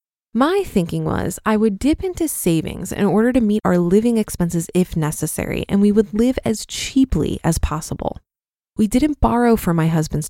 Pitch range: 180-235 Hz